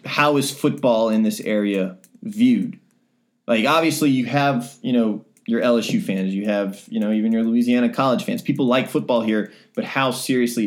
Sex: male